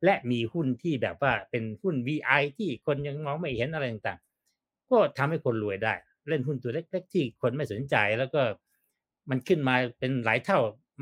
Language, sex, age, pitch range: Thai, male, 60-79, 115-170 Hz